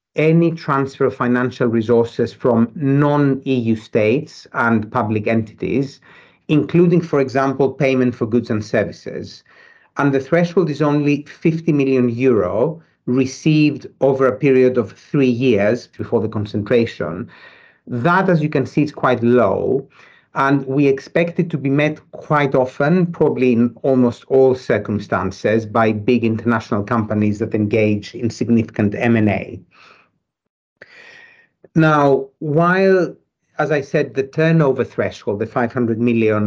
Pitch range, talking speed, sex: 115-145 Hz, 130 wpm, male